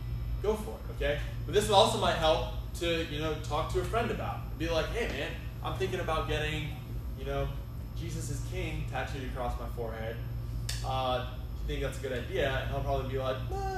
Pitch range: 115-140 Hz